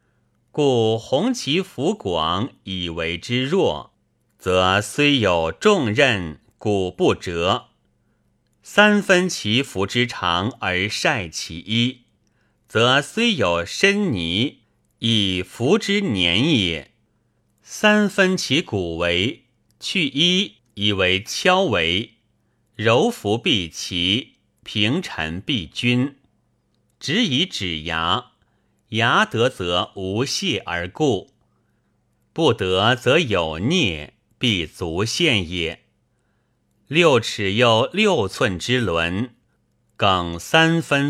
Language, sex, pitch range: Chinese, male, 95-140 Hz